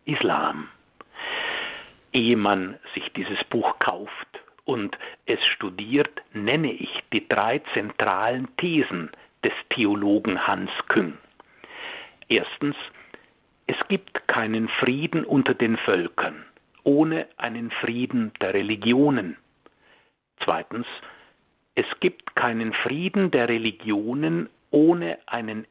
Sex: male